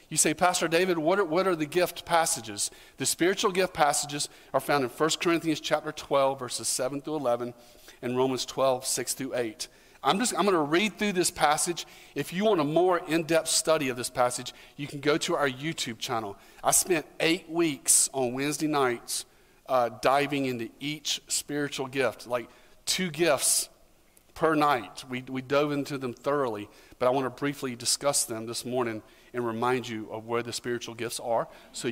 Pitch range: 125-170 Hz